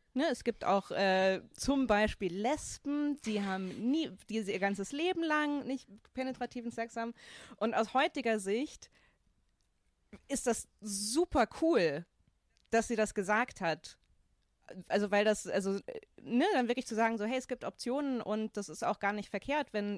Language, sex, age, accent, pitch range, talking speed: German, female, 20-39, German, 205-250 Hz, 160 wpm